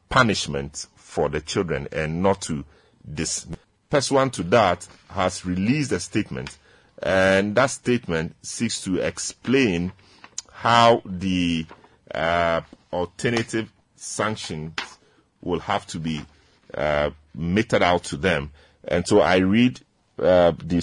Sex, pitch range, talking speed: male, 85-105 Hz, 120 wpm